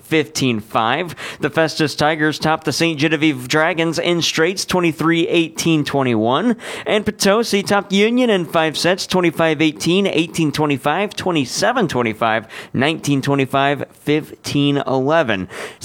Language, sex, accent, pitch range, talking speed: English, male, American, 150-185 Hz, 85 wpm